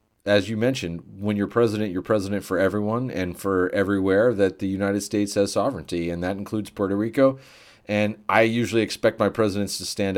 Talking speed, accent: 190 wpm, American